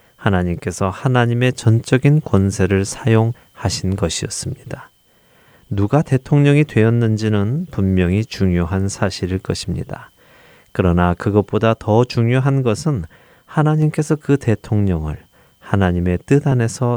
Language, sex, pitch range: Korean, male, 95-125 Hz